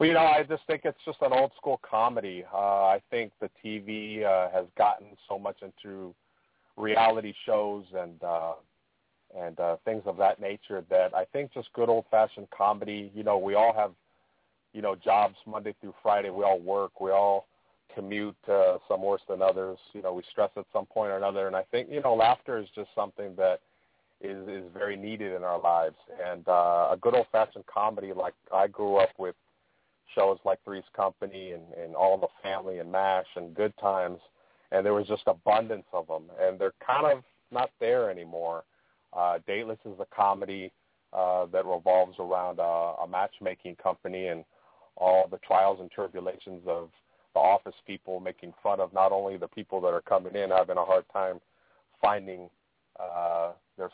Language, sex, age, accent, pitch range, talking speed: English, male, 40-59, American, 90-105 Hz, 185 wpm